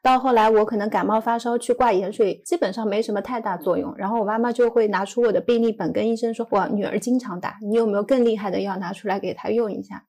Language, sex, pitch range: Chinese, female, 215-255 Hz